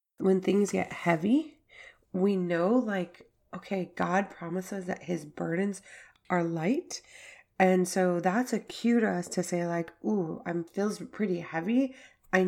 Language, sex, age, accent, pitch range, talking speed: English, female, 30-49, American, 165-195 Hz, 150 wpm